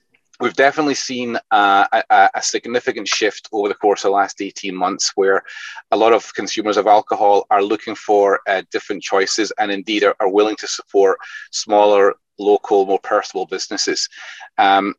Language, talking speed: English, 170 wpm